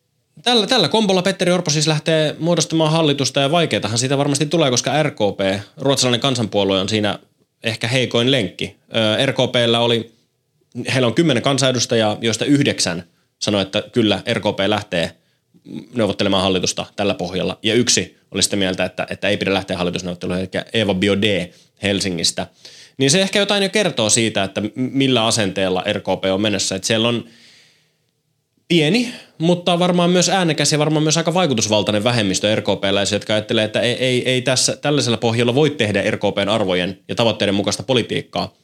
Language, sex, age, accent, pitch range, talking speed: Finnish, male, 20-39, native, 100-140 Hz, 155 wpm